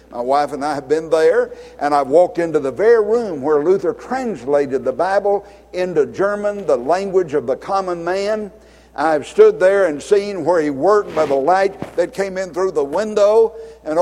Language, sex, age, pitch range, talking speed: English, male, 60-79, 180-245 Hz, 195 wpm